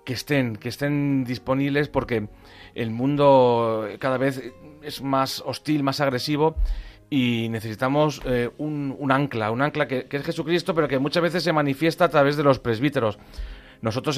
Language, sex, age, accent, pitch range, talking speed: Spanish, male, 40-59, Spanish, 120-145 Hz, 165 wpm